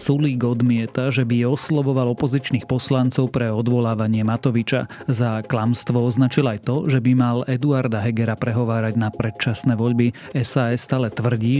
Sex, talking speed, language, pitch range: male, 140 wpm, Slovak, 115-130 Hz